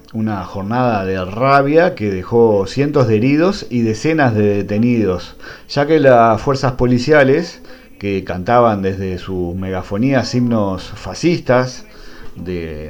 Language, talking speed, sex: English, 120 wpm, male